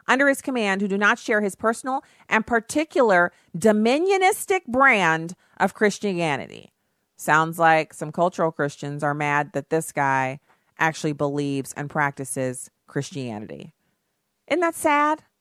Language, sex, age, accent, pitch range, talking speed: English, female, 40-59, American, 170-245 Hz, 130 wpm